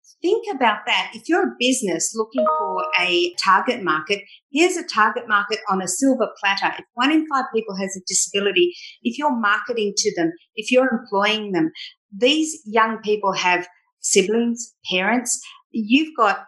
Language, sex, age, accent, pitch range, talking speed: English, female, 50-69, Australian, 200-255 Hz, 165 wpm